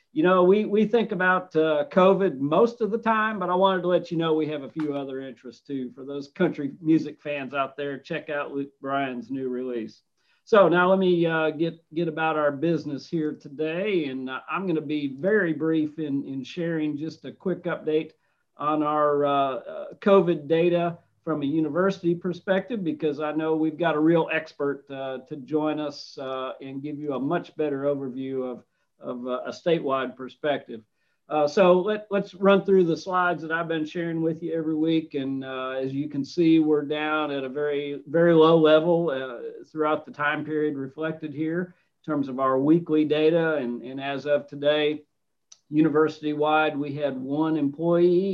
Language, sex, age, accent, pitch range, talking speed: English, male, 50-69, American, 140-165 Hz, 190 wpm